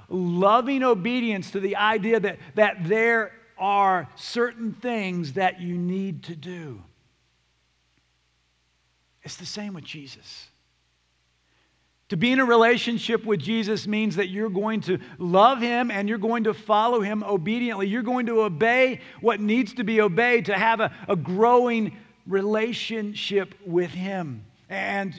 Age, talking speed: 50-69, 145 wpm